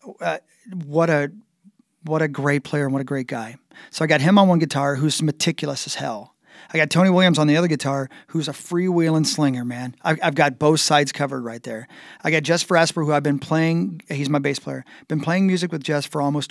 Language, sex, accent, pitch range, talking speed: English, male, American, 135-160 Hz, 235 wpm